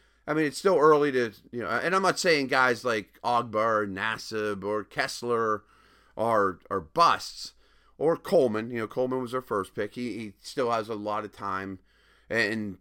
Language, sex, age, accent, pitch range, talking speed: English, male, 30-49, American, 105-145 Hz, 185 wpm